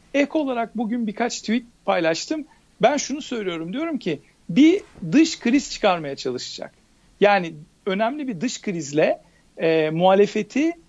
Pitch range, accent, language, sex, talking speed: 170-245 Hz, native, Turkish, male, 125 wpm